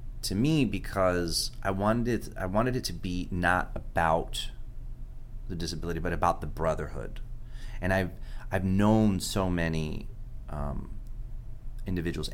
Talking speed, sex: 125 wpm, male